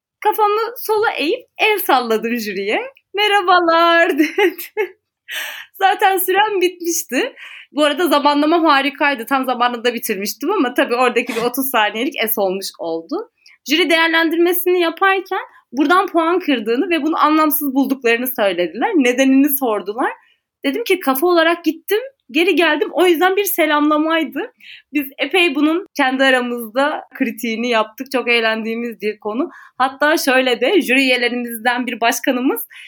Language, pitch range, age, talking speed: Turkish, 255-360 Hz, 30-49, 125 wpm